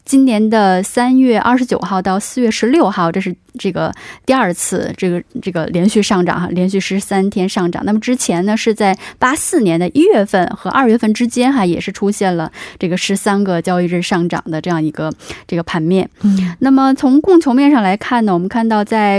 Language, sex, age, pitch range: Korean, female, 20-39, 185-235 Hz